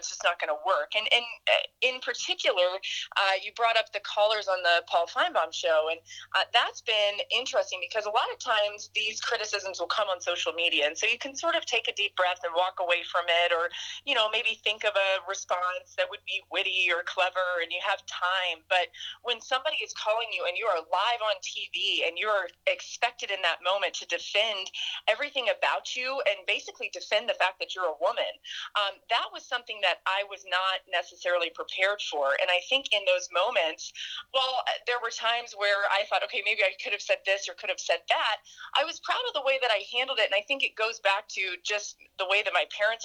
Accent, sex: American, female